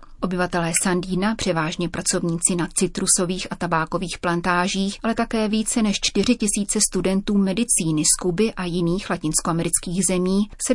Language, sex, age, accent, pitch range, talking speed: Czech, female, 30-49, native, 175-200 Hz, 135 wpm